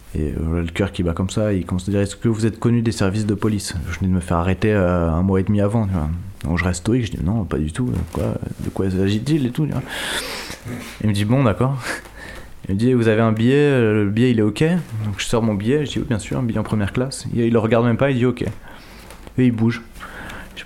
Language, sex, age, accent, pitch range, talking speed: French, male, 20-39, French, 95-115 Hz, 280 wpm